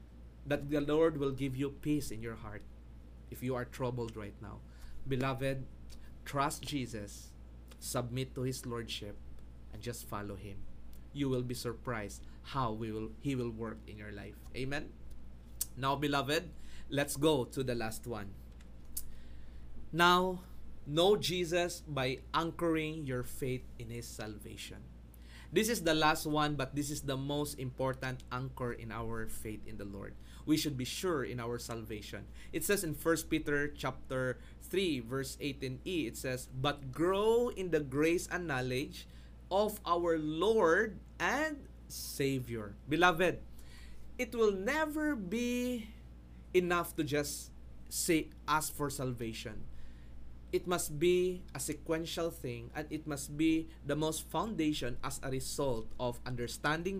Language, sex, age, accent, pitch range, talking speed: English, male, 20-39, Filipino, 105-155 Hz, 140 wpm